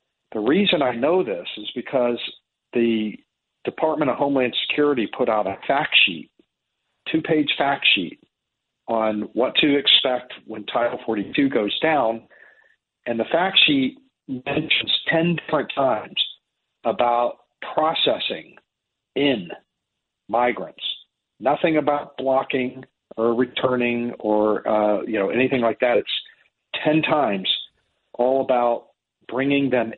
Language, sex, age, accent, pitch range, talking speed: English, male, 50-69, American, 115-145 Hz, 120 wpm